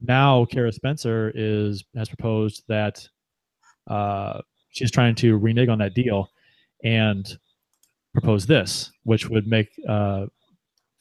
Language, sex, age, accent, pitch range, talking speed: English, male, 30-49, American, 110-130 Hz, 120 wpm